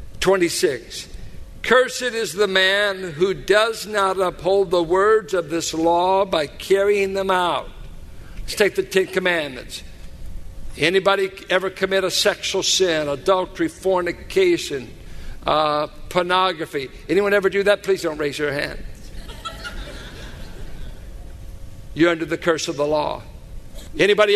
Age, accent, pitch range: 60-79, American, 130-190 Hz